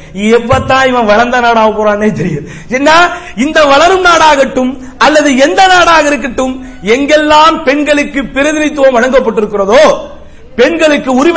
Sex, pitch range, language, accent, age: male, 240-300 Hz, English, Indian, 50-69